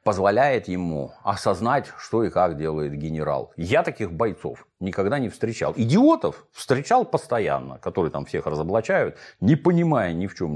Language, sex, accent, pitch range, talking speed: Russian, male, native, 80-140 Hz, 150 wpm